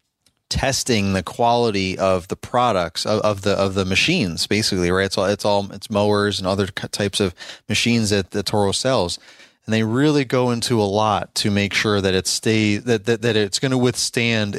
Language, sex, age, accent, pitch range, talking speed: English, male, 30-49, American, 100-115 Hz, 205 wpm